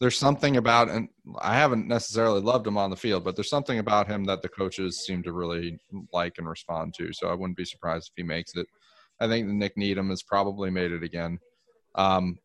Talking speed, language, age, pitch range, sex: 220 wpm, English, 30-49, 90-105 Hz, male